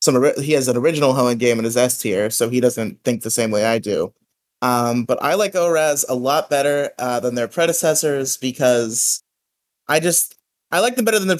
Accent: American